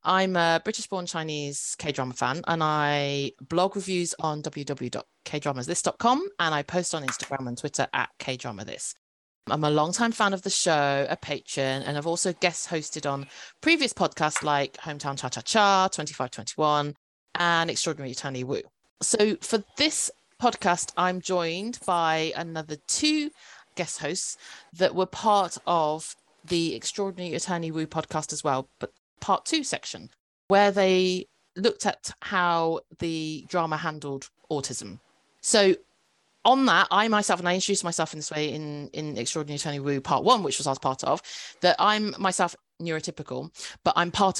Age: 30-49